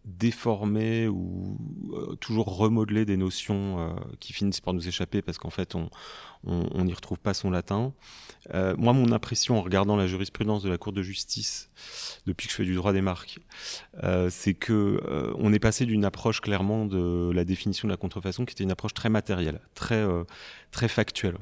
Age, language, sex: 30-49, French, male